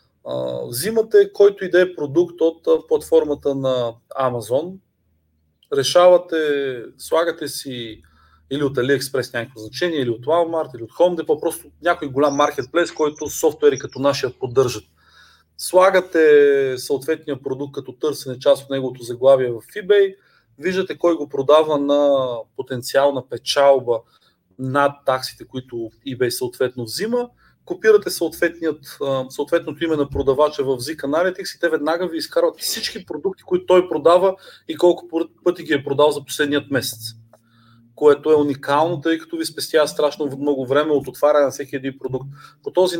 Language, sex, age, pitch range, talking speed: Bulgarian, male, 30-49, 130-175 Hz, 145 wpm